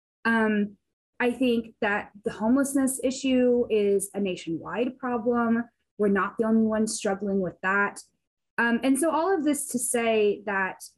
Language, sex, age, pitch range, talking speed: English, female, 20-39, 210-265 Hz, 155 wpm